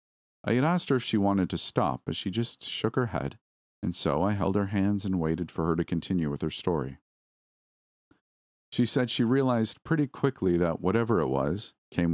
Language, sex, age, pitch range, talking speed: English, male, 40-59, 75-95 Hz, 205 wpm